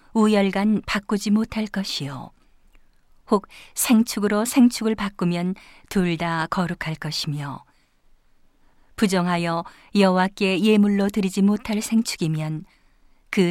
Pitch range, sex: 175-210 Hz, female